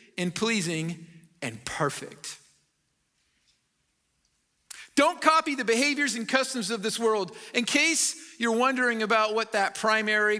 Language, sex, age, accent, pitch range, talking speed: English, male, 40-59, American, 205-275 Hz, 120 wpm